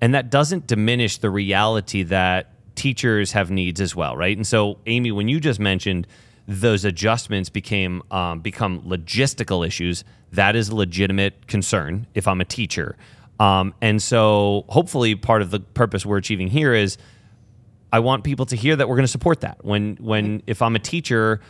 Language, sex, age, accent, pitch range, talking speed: English, male, 30-49, American, 100-115 Hz, 180 wpm